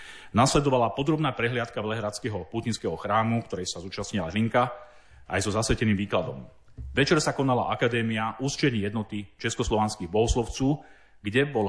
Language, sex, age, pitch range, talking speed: Slovak, male, 40-59, 105-135 Hz, 125 wpm